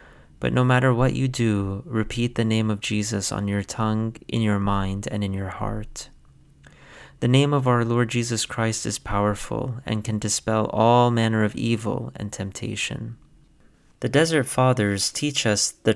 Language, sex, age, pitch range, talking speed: English, male, 30-49, 105-125 Hz, 170 wpm